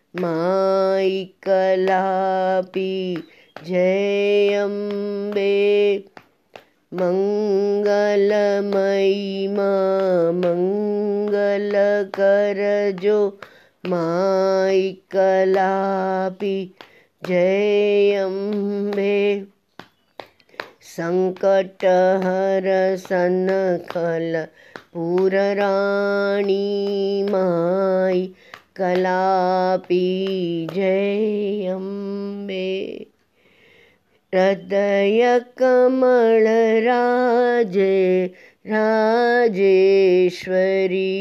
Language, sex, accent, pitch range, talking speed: Hindi, female, native, 185-205 Hz, 40 wpm